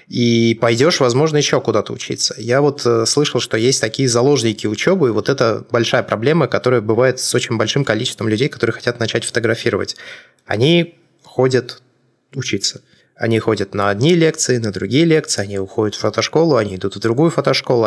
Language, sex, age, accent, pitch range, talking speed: Russian, male, 20-39, native, 110-130 Hz, 170 wpm